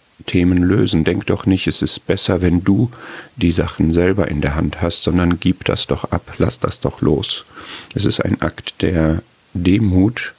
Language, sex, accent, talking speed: German, male, German, 185 wpm